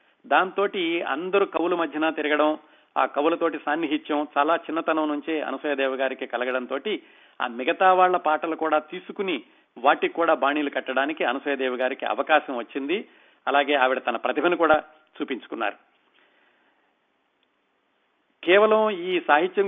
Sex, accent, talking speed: male, native, 115 wpm